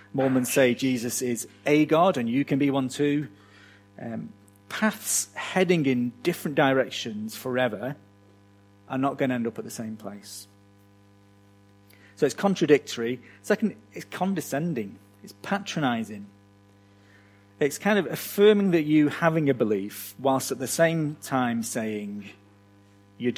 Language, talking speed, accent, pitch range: English, 135 wpm, British, 100-145 Hz